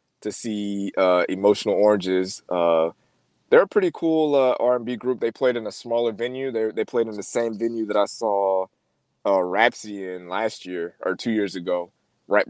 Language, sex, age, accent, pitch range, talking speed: English, male, 20-39, American, 95-130 Hz, 185 wpm